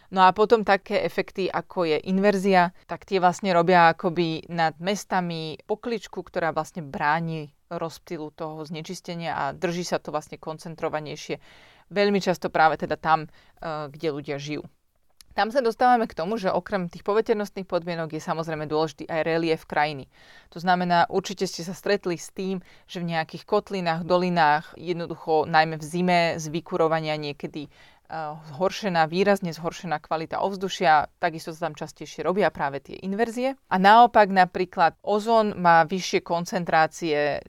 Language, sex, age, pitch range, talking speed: Slovak, female, 30-49, 160-190 Hz, 145 wpm